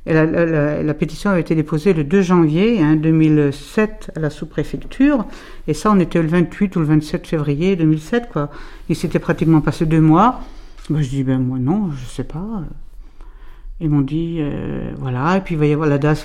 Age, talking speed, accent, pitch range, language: 60-79, 210 wpm, French, 145-170 Hz, French